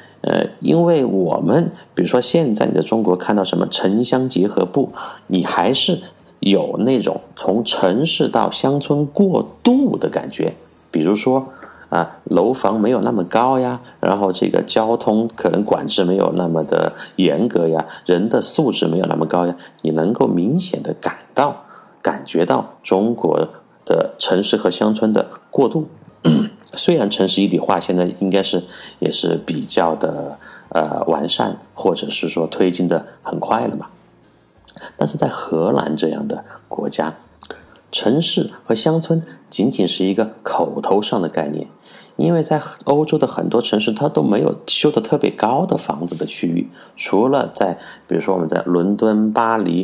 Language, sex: Chinese, male